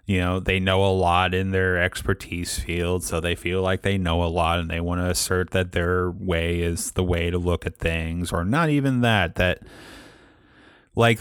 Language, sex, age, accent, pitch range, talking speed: English, male, 30-49, American, 85-95 Hz, 210 wpm